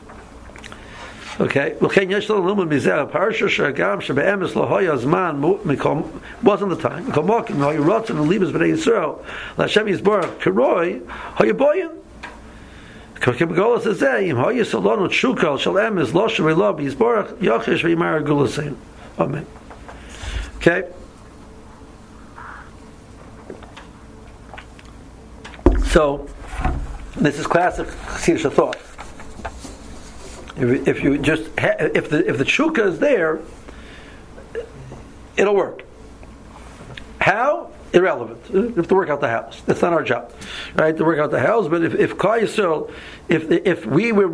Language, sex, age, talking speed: English, male, 60-79, 75 wpm